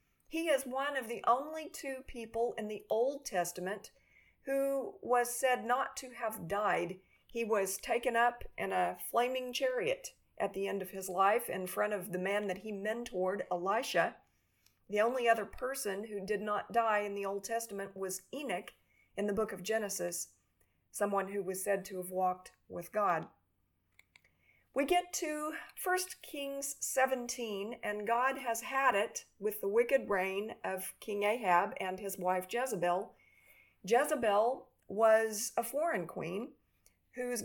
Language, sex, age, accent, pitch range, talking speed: English, female, 50-69, American, 195-245 Hz, 155 wpm